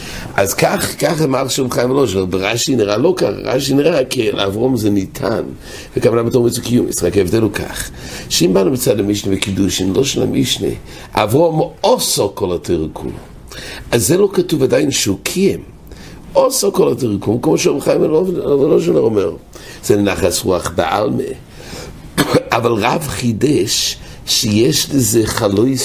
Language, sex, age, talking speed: English, male, 60-79, 130 wpm